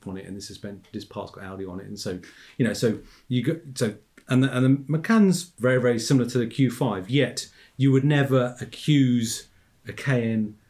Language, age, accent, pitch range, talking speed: English, 40-59, British, 100-125 Hz, 215 wpm